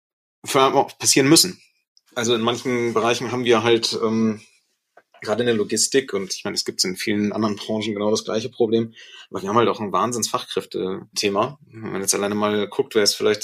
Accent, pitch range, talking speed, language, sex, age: German, 105-120 Hz, 190 wpm, German, male, 30-49